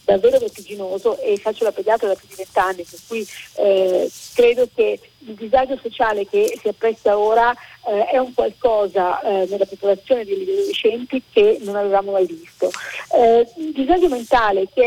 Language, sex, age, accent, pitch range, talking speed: Italian, female, 40-59, native, 200-305 Hz, 170 wpm